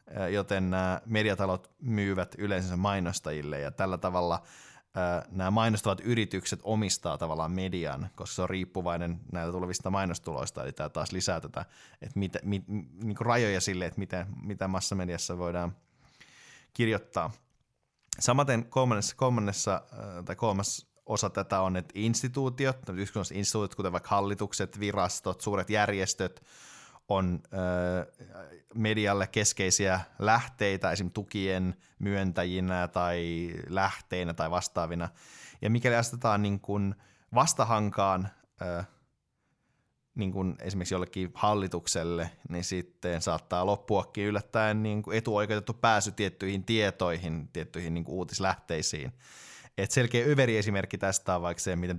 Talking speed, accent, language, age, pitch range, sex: 115 wpm, native, Finnish, 20-39, 90-105 Hz, male